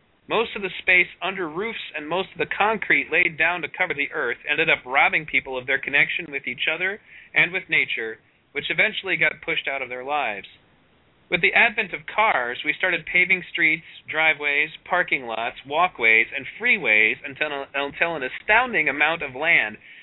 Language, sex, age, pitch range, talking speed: English, male, 30-49, 145-185 Hz, 180 wpm